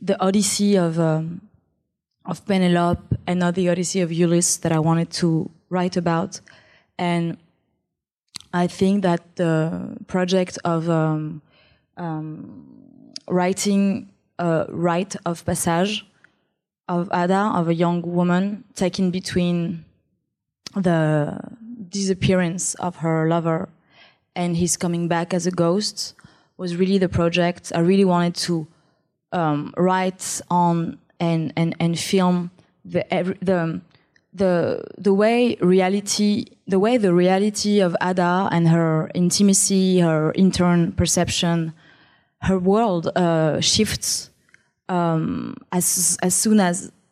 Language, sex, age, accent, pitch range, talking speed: English, female, 20-39, French, 170-190 Hz, 120 wpm